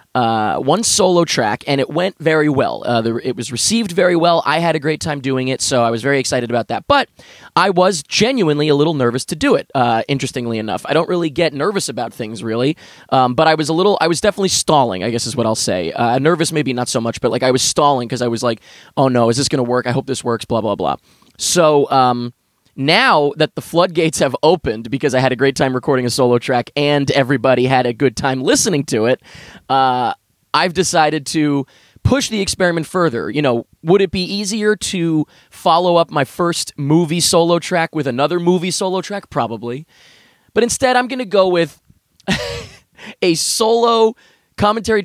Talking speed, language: 210 wpm, English